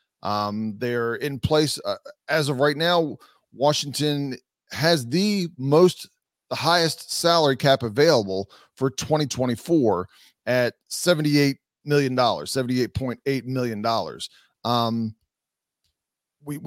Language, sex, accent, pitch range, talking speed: English, male, American, 120-155 Hz, 95 wpm